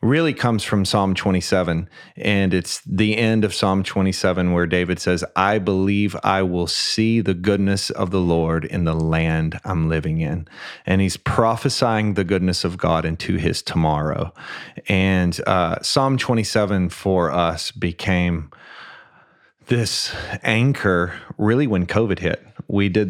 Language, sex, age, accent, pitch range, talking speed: English, male, 30-49, American, 85-100 Hz, 145 wpm